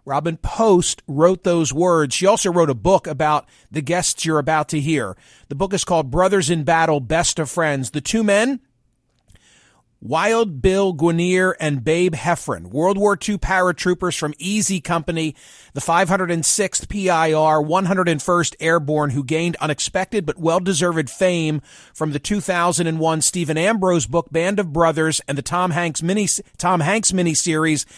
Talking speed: 150 wpm